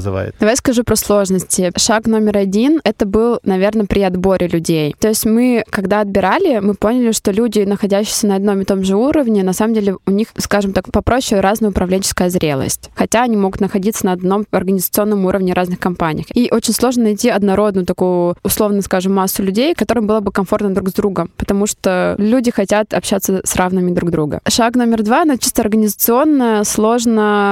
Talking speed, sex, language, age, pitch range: 180 wpm, female, Russian, 20-39, 190-220 Hz